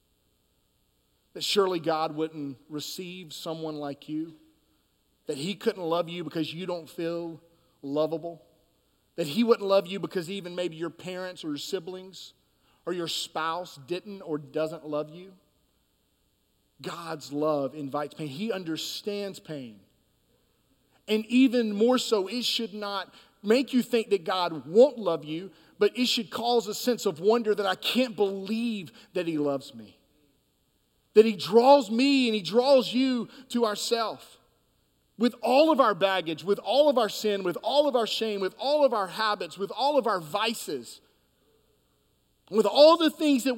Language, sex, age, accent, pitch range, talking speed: English, male, 40-59, American, 165-235 Hz, 160 wpm